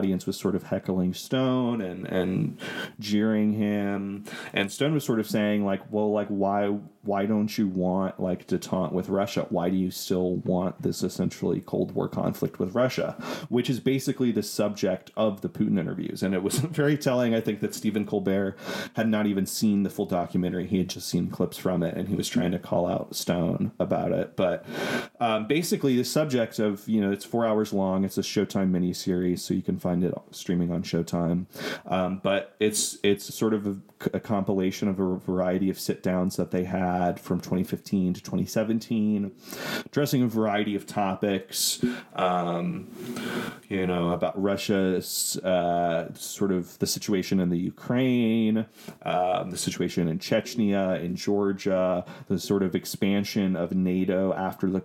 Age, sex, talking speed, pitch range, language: 30-49, male, 175 wpm, 95-110 Hz, English